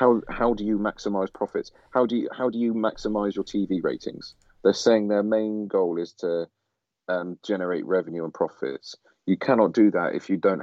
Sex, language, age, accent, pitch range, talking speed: male, English, 40-59, British, 95-110 Hz, 200 wpm